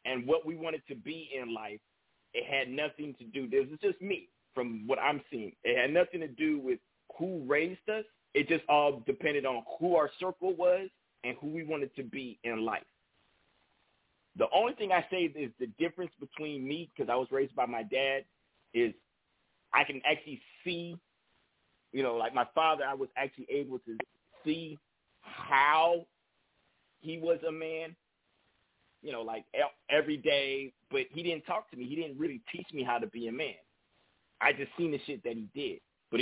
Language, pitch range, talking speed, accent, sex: English, 125-170 Hz, 190 wpm, American, male